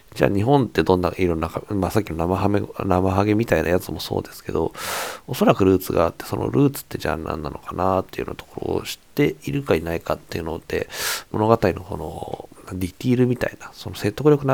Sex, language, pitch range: male, Japanese, 90-110 Hz